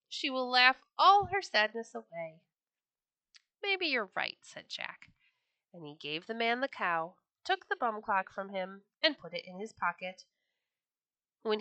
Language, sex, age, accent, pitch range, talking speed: English, female, 30-49, American, 185-290 Hz, 165 wpm